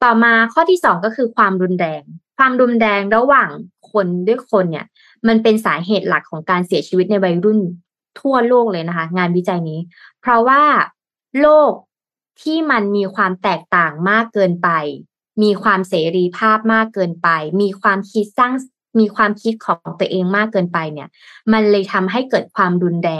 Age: 20-39